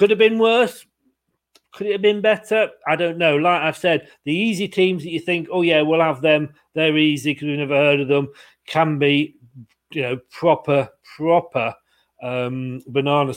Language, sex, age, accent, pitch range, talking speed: English, male, 40-59, British, 150-190 Hz, 190 wpm